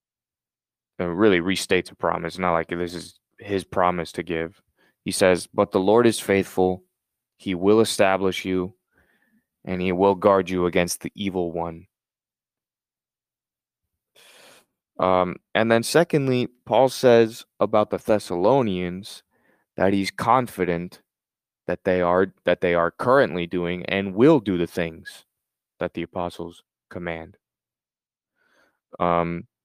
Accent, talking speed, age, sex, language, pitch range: American, 130 wpm, 20-39, male, English, 90-105 Hz